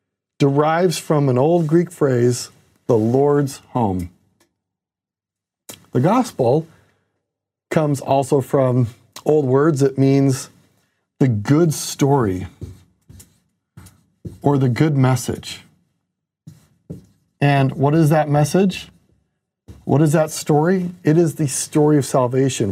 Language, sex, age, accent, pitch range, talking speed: English, male, 40-59, American, 125-165 Hz, 105 wpm